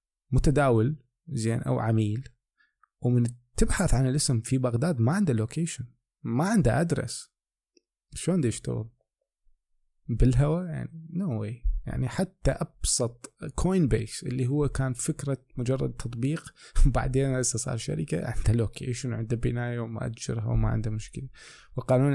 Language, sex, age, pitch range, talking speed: Arabic, male, 20-39, 115-145 Hz, 125 wpm